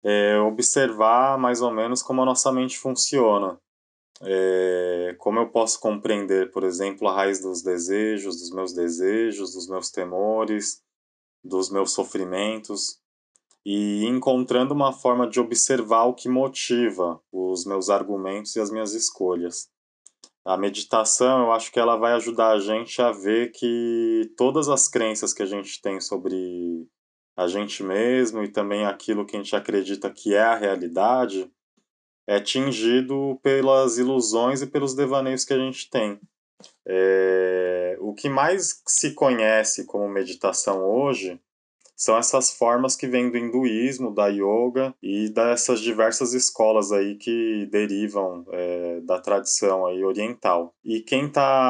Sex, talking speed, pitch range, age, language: male, 140 wpm, 100-125 Hz, 20-39, Portuguese